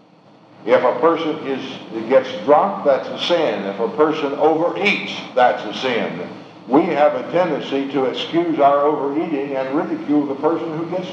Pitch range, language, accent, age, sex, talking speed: 140-180 Hz, English, American, 60-79, male, 160 wpm